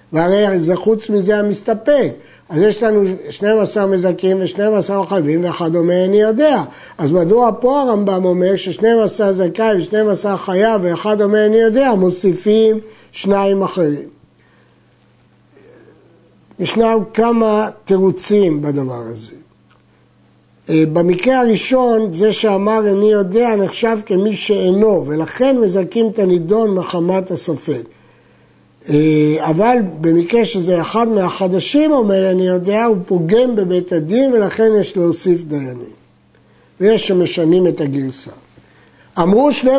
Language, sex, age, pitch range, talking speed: Hebrew, male, 60-79, 175-220 Hz, 120 wpm